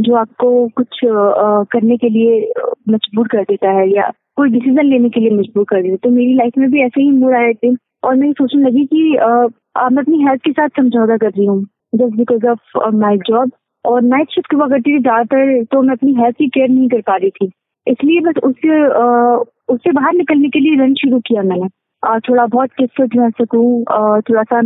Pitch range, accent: 225-260 Hz, native